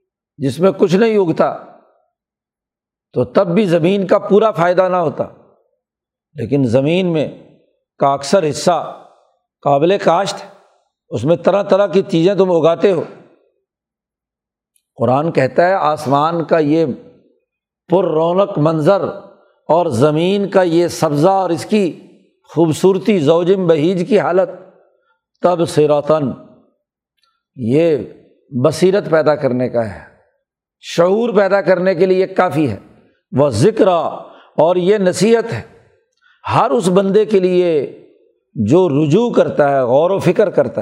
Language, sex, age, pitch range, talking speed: Urdu, male, 60-79, 160-200 Hz, 130 wpm